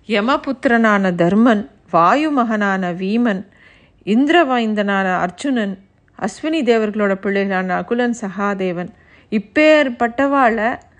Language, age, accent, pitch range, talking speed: Tamil, 50-69, native, 210-275 Hz, 75 wpm